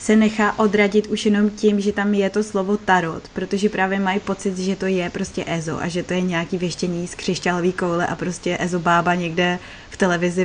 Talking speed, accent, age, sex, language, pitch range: 205 wpm, native, 20-39, female, Czech, 190-220 Hz